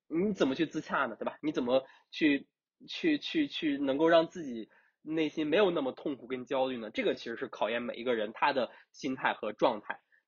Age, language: 20-39, Chinese